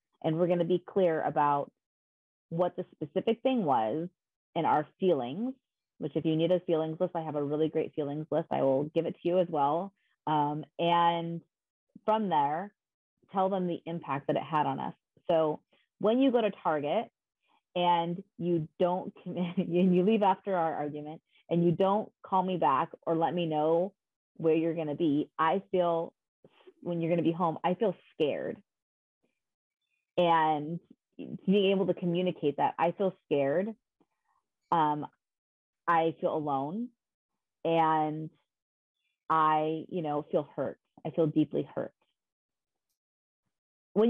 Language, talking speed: English, 155 wpm